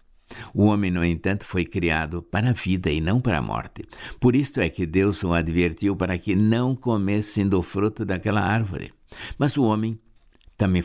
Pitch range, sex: 90-120 Hz, male